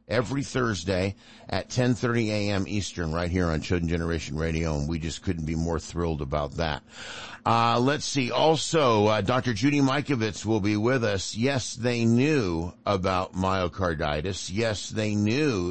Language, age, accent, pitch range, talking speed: English, 50-69, American, 85-125 Hz, 155 wpm